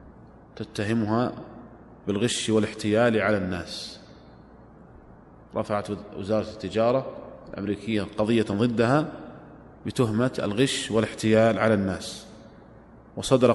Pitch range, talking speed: 105-115 Hz, 75 wpm